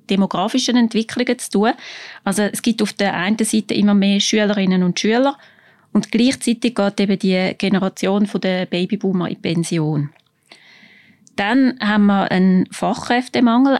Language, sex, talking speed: German, female, 135 wpm